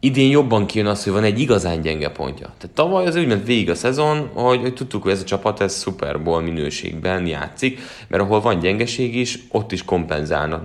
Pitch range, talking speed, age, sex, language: 85-105 Hz, 195 wpm, 30-49, male, Hungarian